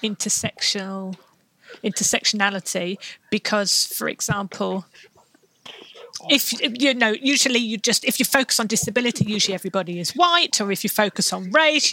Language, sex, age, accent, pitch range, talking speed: English, female, 40-59, British, 200-245 Hz, 130 wpm